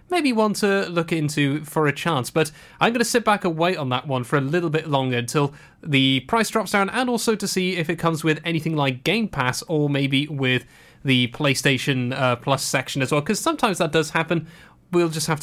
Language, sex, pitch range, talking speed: English, male, 135-170 Hz, 230 wpm